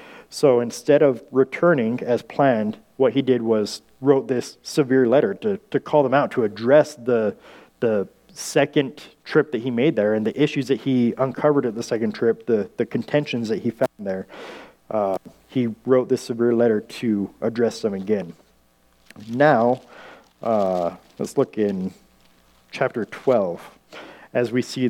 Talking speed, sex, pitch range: 160 wpm, male, 115-140 Hz